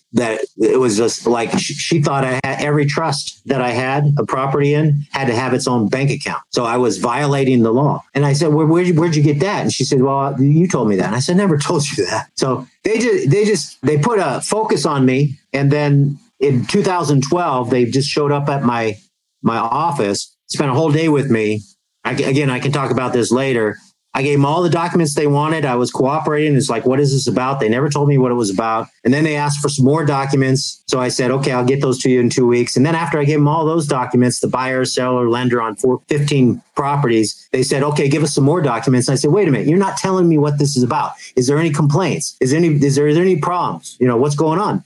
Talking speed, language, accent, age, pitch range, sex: 255 wpm, English, American, 50-69, 130-155 Hz, male